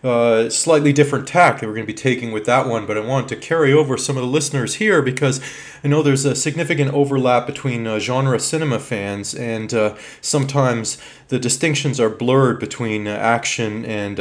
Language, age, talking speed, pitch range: English, 30-49, 200 wpm, 110-140 Hz